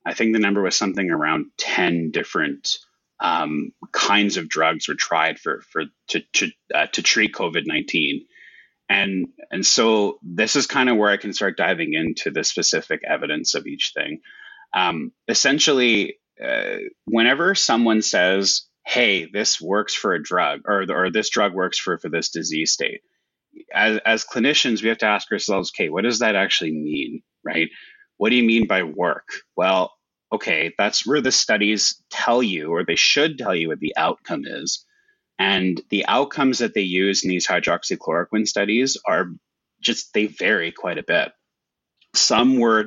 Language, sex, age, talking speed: English, male, 30-49, 170 wpm